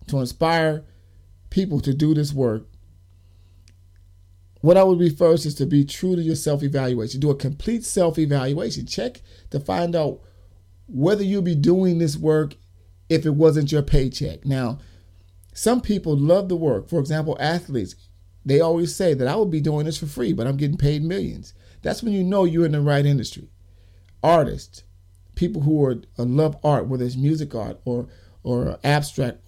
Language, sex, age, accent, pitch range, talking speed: English, male, 50-69, American, 105-165 Hz, 175 wpm